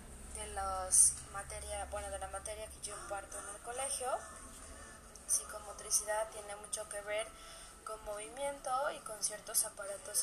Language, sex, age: English, female, 20-39